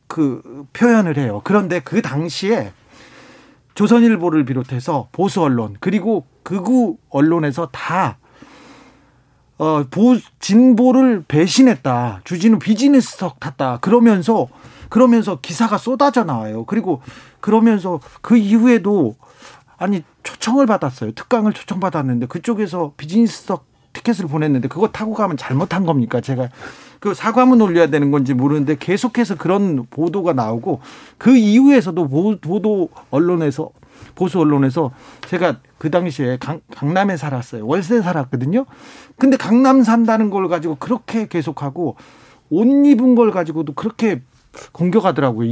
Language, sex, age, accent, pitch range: Korean, male, 40-59, native, 145-225 Hz